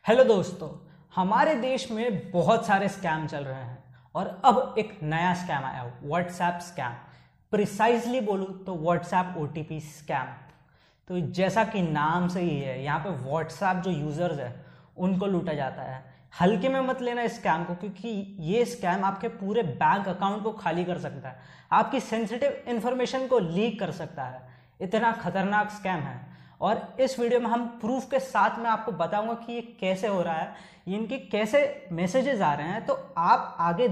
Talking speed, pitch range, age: 175 wpm, 170-230 Hz, 20-39